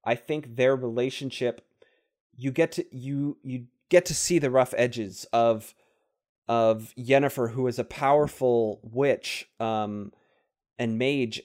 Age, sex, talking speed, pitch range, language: 30-49, male, 135 wpm, 115-150 Hz, English